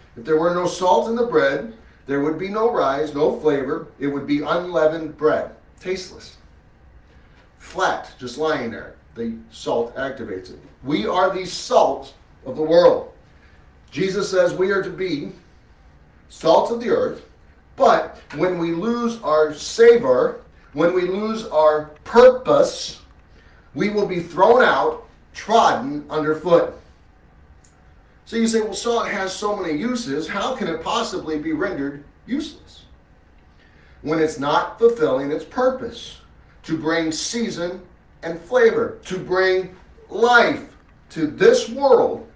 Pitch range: 140-220 Hz